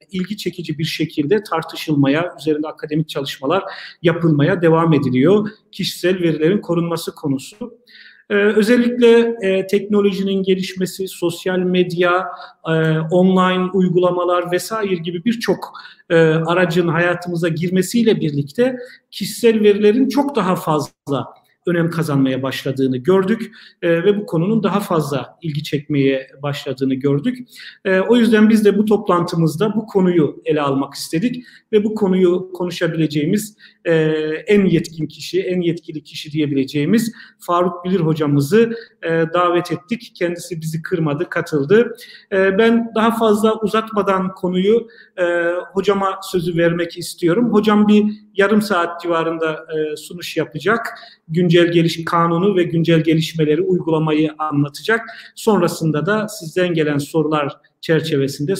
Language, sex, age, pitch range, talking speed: Turkish, male, 40-59, 160-205 Hz, 120 wpm